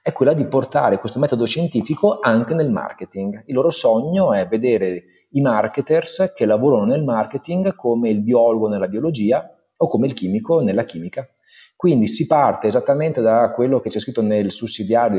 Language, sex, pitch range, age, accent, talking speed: Italian, male, 100-135 Hz, 30-49, native, 170 wpm